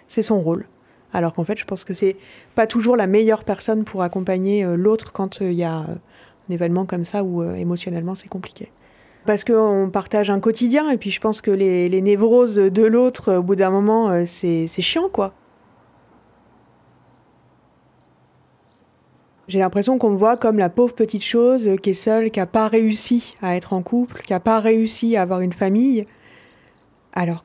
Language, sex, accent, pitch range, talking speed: French, female, French, 180-220 Hz, 190 wpm